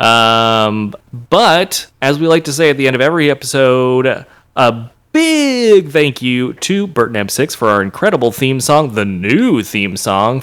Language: English